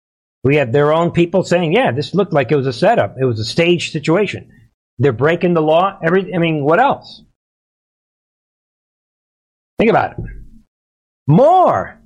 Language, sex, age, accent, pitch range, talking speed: English, male, 50-69, American, 130-170 Hz, 160 wpm